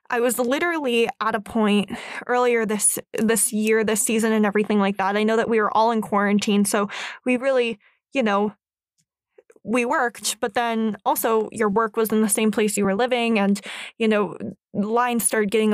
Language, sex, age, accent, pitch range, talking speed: English, female, 20-39, American, 205-235 Hz, 190 wpm